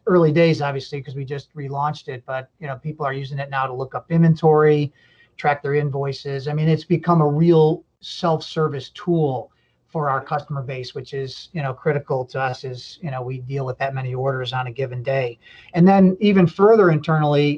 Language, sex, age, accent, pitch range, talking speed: English, male, 40-59, American, 135-155 Hz, 205 wpm